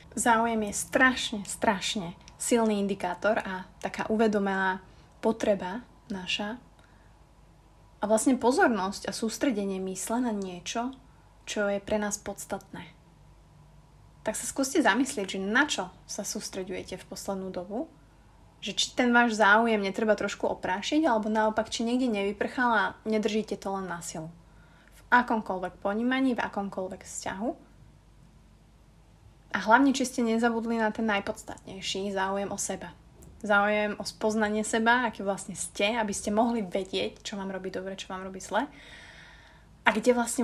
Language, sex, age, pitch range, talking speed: Slovak, female, 30-49, 190-230 Hz, 140 wpm